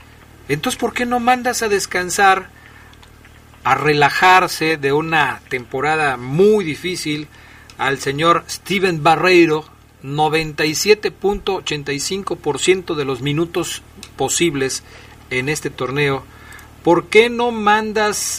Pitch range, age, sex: 140-185 Hz, 40-59, male